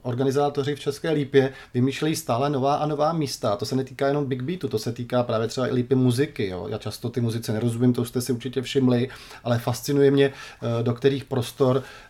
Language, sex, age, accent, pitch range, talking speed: Czech, male, 30-49, native, 125-145 Hz, 210 wpm